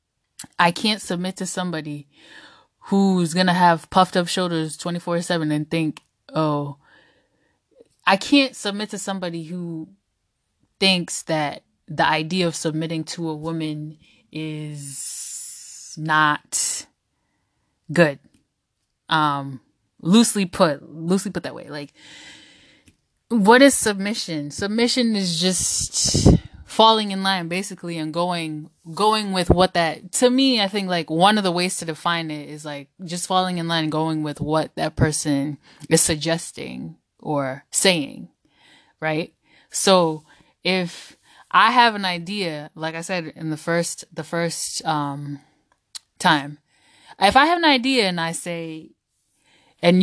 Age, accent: 10-29, American